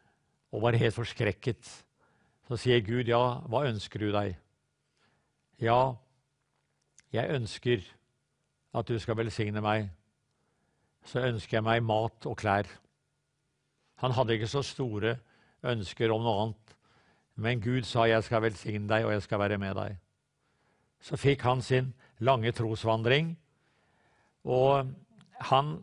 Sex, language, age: male, English, 50-69